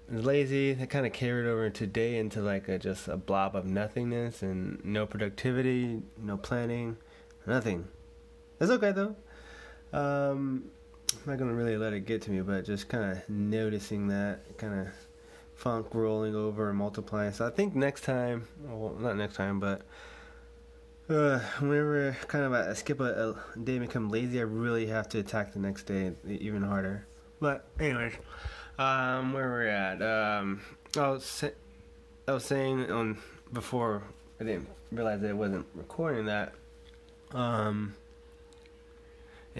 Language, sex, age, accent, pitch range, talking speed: English, male, 20-39, American, 100-125 Hz, 160 wpm